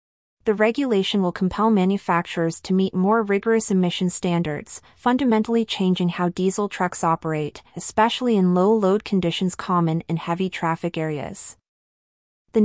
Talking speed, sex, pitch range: 130 wpm, female, 170-205 Hz